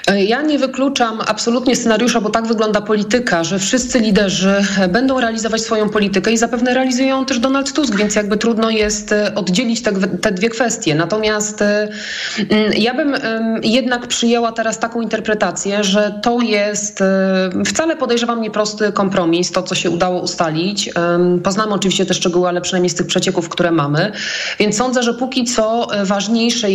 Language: Polish